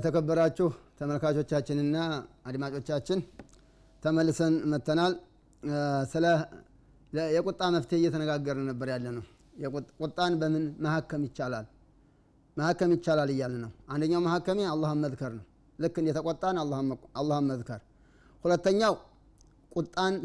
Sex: male